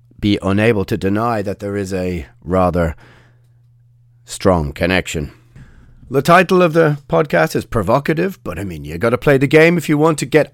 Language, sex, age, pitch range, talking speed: English, male, 30-49, 105-145 Hz, 180 wpm